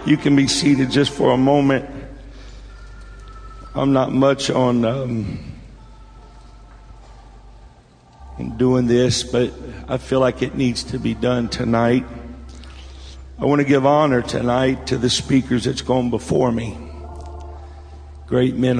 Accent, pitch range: American, 110-130 Hz